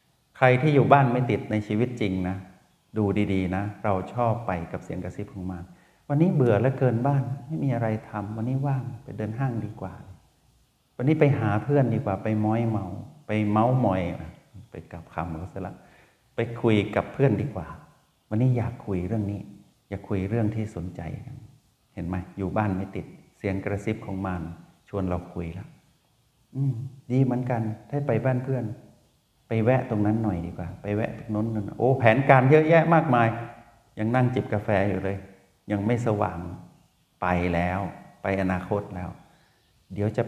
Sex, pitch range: male, 95-120 Hz